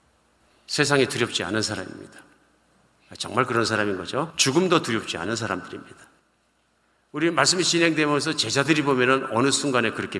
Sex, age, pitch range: male, 50-69, 100-145 Hz